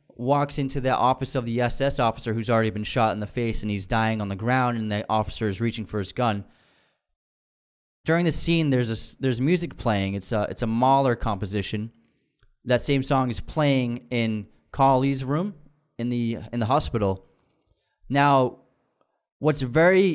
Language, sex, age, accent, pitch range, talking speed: English, male, 20-39, American, 110-140 Hz, 175 wpm